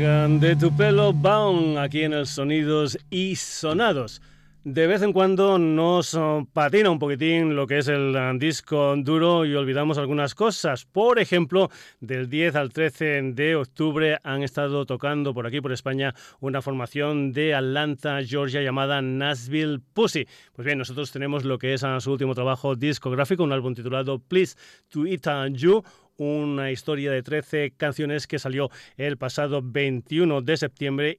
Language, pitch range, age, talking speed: Spanish, 135-160 Hz, 40-59, 160 wpm